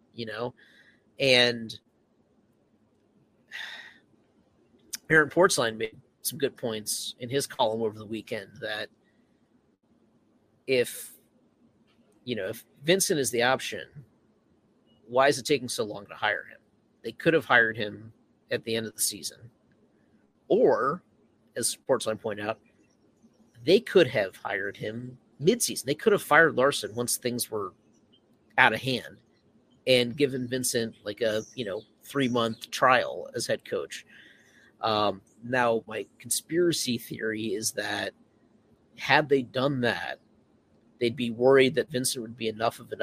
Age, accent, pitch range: 30-49, American, 115-135 Hz